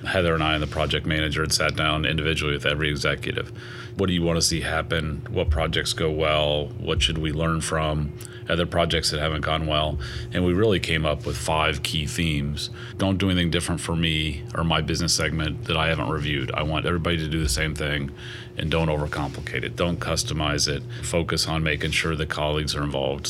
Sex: male